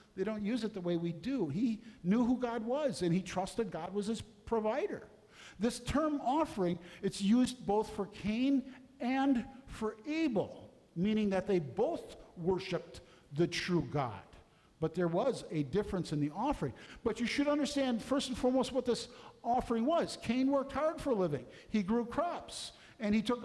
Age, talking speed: 50-69, 180 wpm